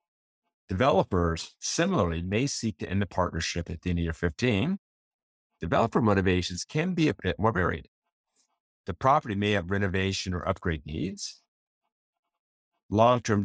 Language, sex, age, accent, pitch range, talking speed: English, male, 30-49, American, 90-110 Hz, 140 wpm